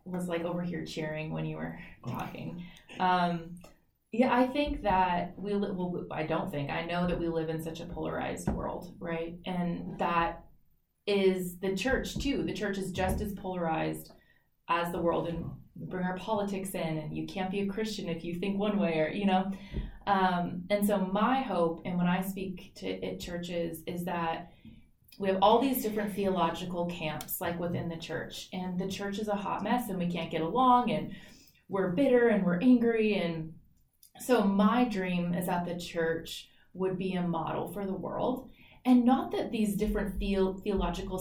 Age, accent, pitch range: 20-39, American, 175-205 Hz